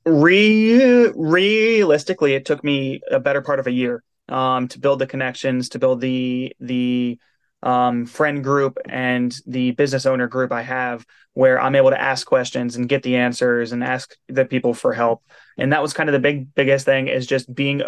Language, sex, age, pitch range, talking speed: English, male, 20-39, 125-150 Hz, 195 wpm